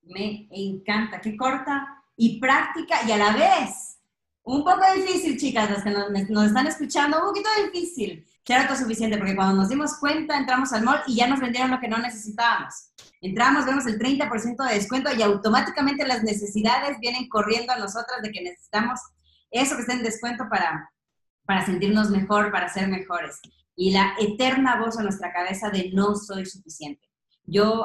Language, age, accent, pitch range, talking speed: Spanish, 30-49, Mexican, 190-245 Hz, 180 wpm